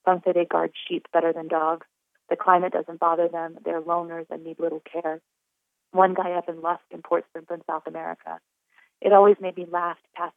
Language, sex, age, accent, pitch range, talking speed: English, female, 30-49, American, 165-180 Hz, 210 wpm